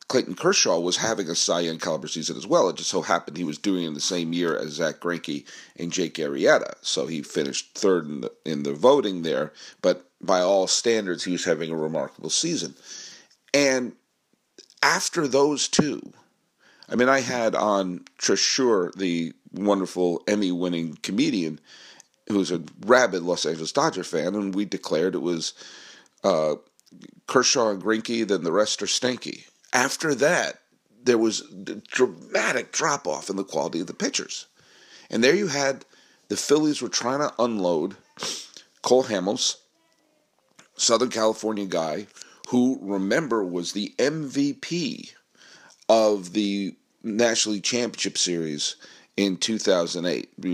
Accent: American